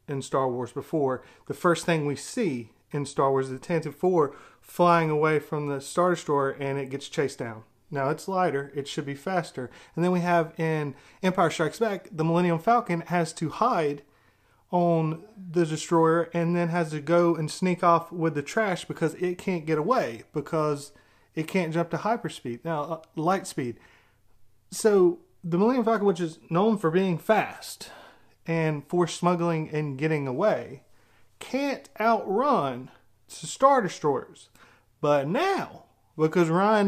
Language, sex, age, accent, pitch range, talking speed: English, male, 30-49, American, 145-190 Hz, 165 wpm